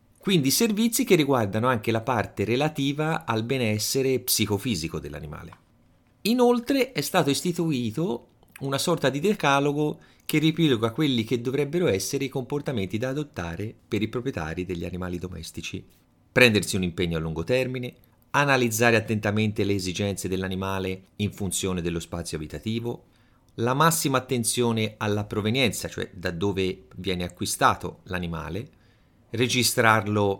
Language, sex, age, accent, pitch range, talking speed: Italian, male, 30-49, native, 95-130 Hz, 125 wpm